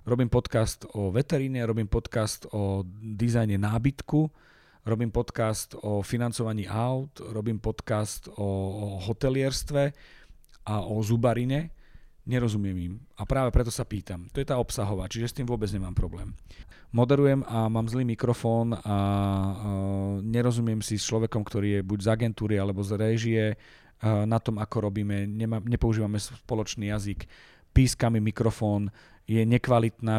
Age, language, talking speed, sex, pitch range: 40-59, Slovak, 135 wpm, male, 105-125 Hz